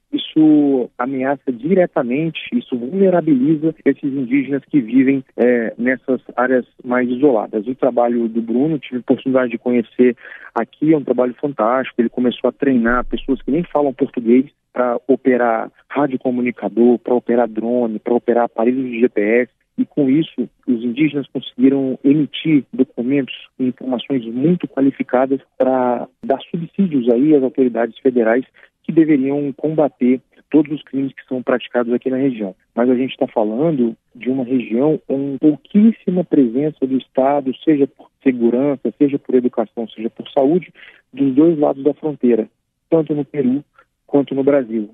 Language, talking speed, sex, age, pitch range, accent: Portuguese, 150 wpm, male, 40-59, 120-145 Hz, Brazilian